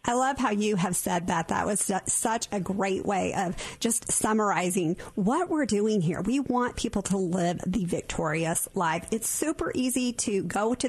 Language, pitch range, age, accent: English, 180-240 Hz, 40-59, American